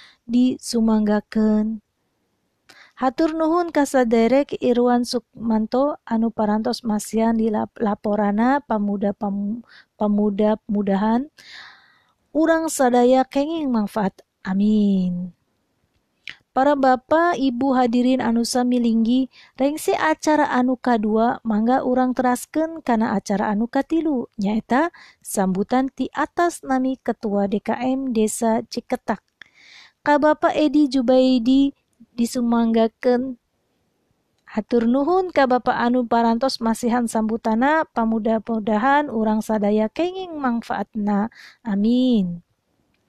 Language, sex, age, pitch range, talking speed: Indonesian, female, 30-49, 215-270 Hz, 90 wpm